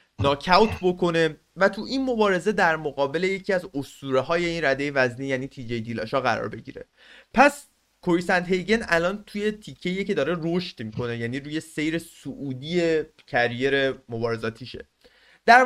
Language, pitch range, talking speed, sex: Persian, 130-190 Hz, 145 wpm, male